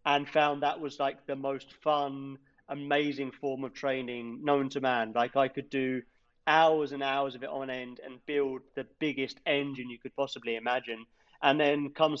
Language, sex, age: English, male, 40-59